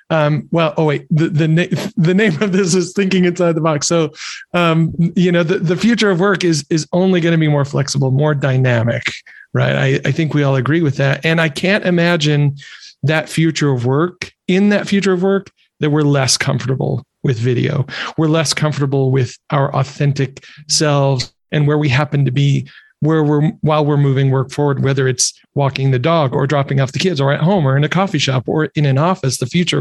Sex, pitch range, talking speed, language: male, 140-170 Hz, 215 wpm, English